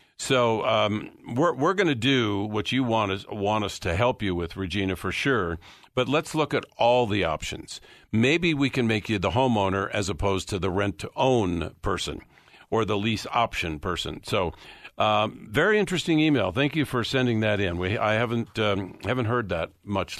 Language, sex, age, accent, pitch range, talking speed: English, male, 50-69, American, 100-130 Hz, 190 wpm